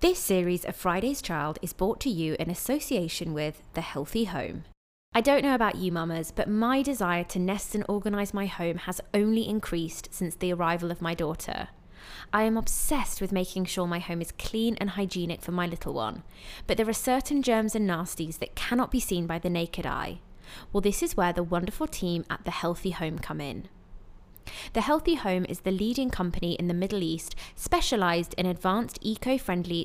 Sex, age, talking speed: female, 20-39, 195 wpm